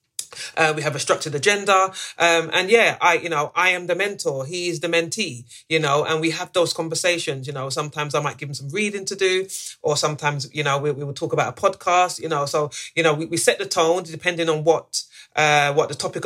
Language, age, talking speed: English, 30-49, 240 wpm